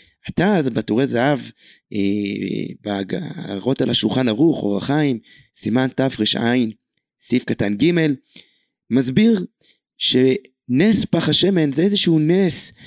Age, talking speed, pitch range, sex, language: 30-49, 110 wpm, 115-160 Hz, male, Hebrew